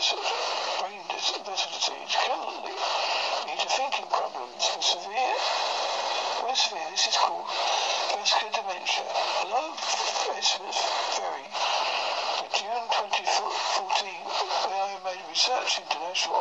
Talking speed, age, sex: 100 wpm, 60-79, male